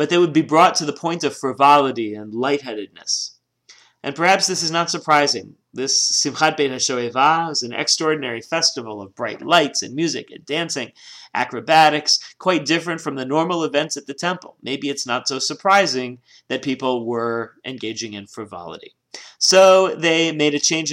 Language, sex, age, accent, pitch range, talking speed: English, male, 40-59, American, 130-165 Hz, 170 wpm